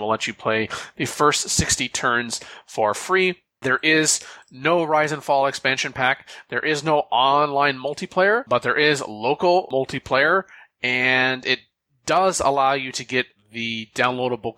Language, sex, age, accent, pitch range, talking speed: English, male, 30-49, American, 115-145 Hz, 150 wpm